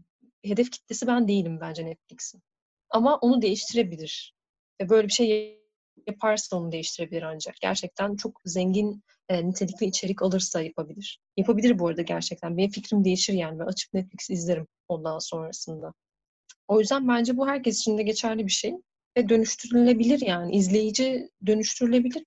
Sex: female